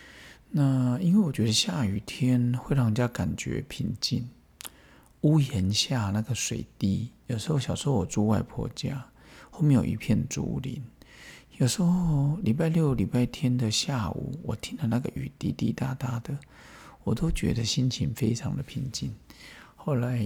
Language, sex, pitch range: Chinese, male, 115-145 Hz